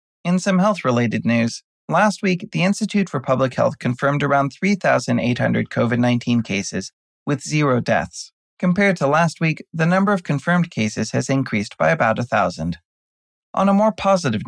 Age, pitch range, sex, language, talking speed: 30-49, 115-165 Hz, male, English, 155 wpm